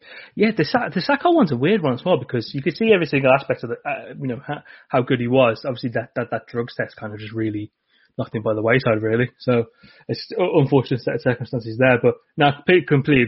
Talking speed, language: 245 wpm, English